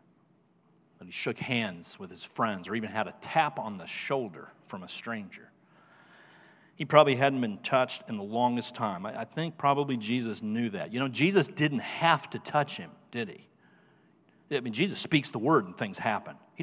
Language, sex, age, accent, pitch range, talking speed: English, male, 40-59, American, 125-185 Hz, 190 wpm